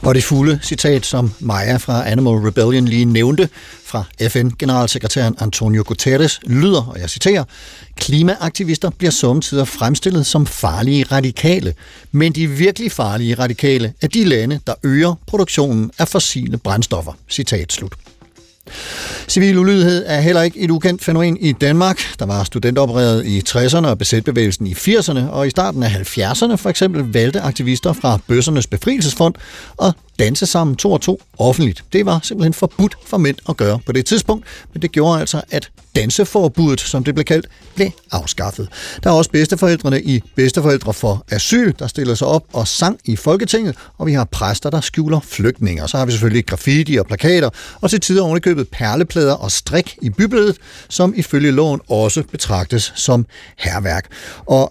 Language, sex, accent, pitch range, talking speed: Danish, male, native, 120-165 Hz, 160 wpm